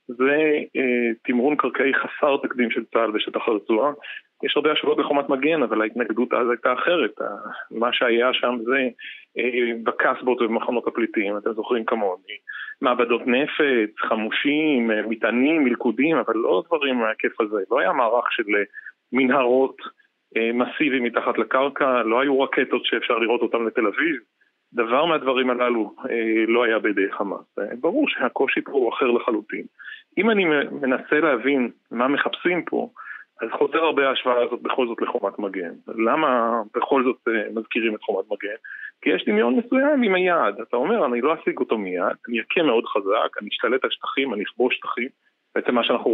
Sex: male